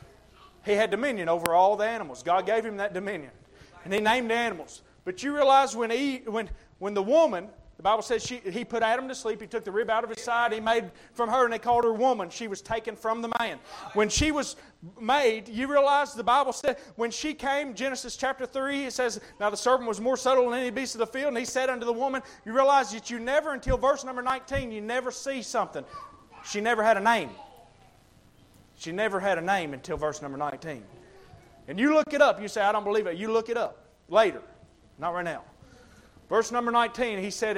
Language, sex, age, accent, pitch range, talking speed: English, male, 30-49, American, 200-260 Hz, 230 wpm